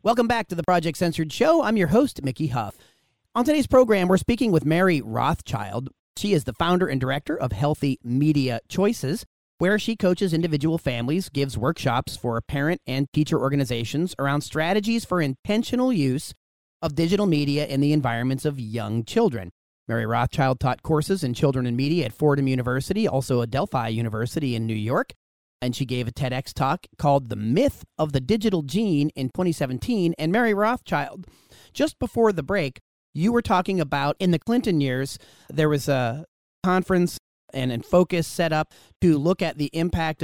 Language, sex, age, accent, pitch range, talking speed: English, male, 30-49, American, 130-180 Hz, 175 wpm